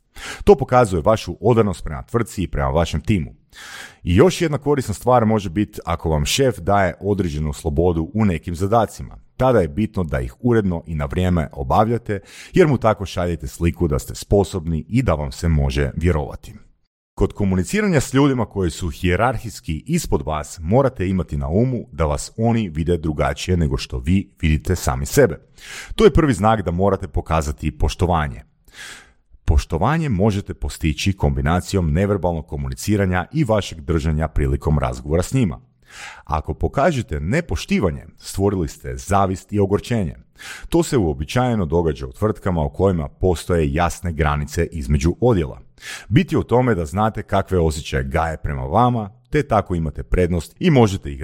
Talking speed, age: 155 wpm, 40-59